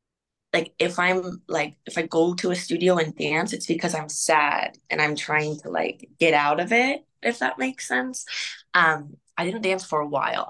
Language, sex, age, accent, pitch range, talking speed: English, female, 20-39, American, 150-175 Hz, 205 wpm